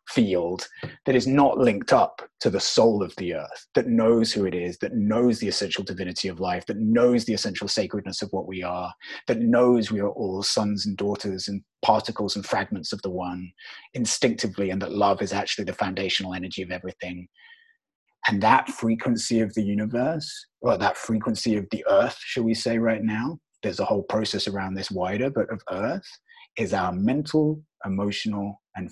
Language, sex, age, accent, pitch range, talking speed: English, male, 20-39, British, 100-130 Hz, 190 wpm